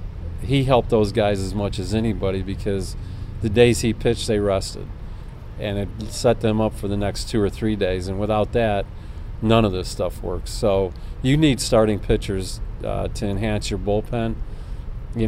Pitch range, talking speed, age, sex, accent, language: 95-110 Hz, 180 wpm, 40-59, male, American, English